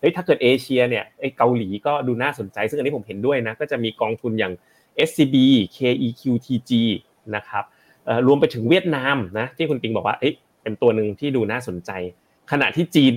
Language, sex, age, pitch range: Thai, male, 30-49, 110-140 Hz